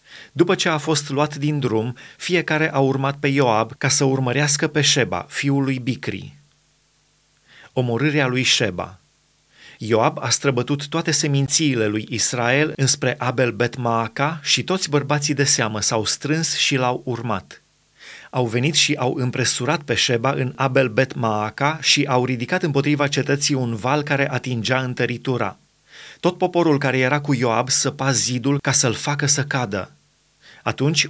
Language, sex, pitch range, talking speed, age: Romanian, male, 120-150 Hz, 150 wpm, 30-49